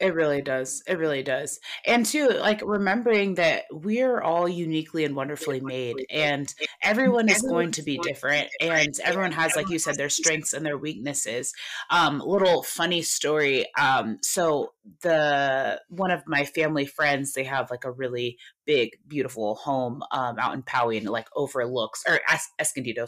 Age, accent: 20-39, American